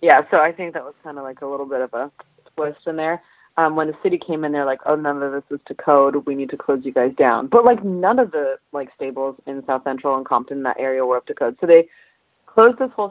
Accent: American